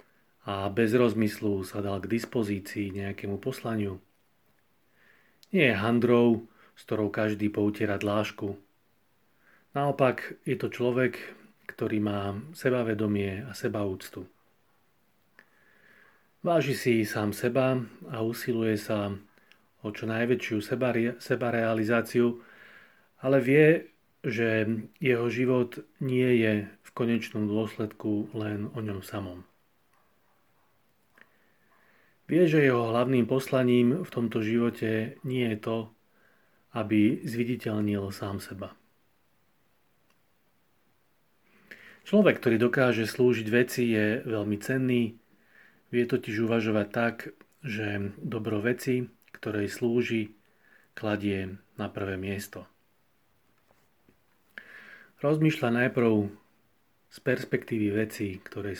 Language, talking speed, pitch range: Slovak, 95 wpm, 105-125 Hz